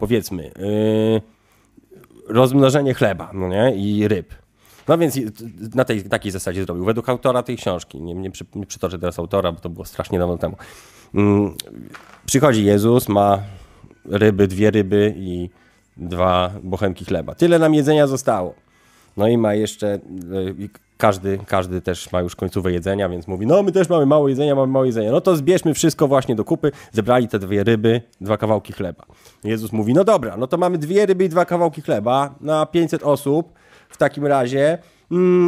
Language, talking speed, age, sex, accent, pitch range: Polish, 165 wpm, 30-49, male, native, 95-145 Hz